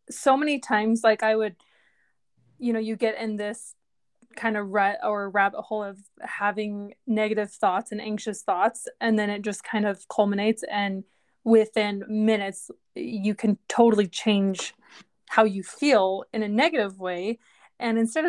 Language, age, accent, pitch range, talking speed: English, 20-39, American, 210-235 Hz, 160 wpm